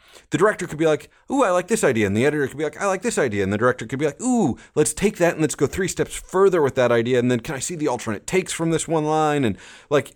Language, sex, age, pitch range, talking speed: English, male, 30-49, 110-160 Hz, 315 wpm